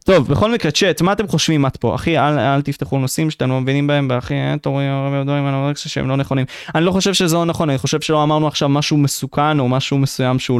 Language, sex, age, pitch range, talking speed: Hebrew, male, 20-39, 135-160 Hz, 245 wpm